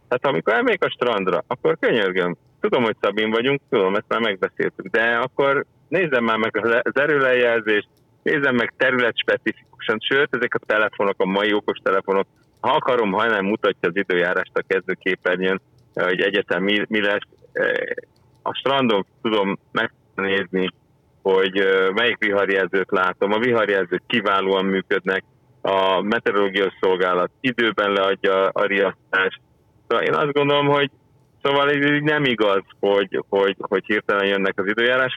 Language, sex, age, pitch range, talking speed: Hungarian, male, 30-49, 95-135 Hz, 140 wpm